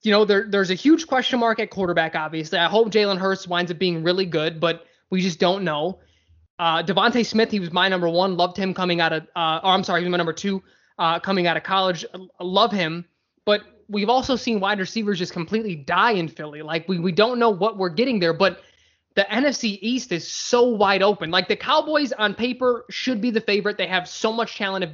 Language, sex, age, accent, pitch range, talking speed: English, male, 20-39, American, 175-215 Hz, 235 wpm